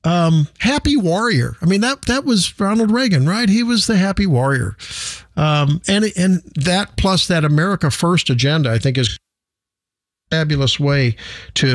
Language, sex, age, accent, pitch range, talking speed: English, male, 50-69, American, 135-190 Hz, 165 wpm